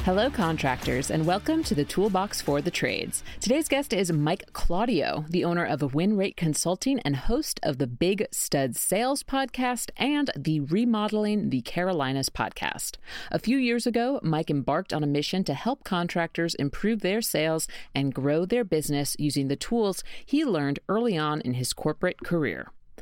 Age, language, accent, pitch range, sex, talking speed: 40-59, English, American, 140-210 Hz, female, 165 wpm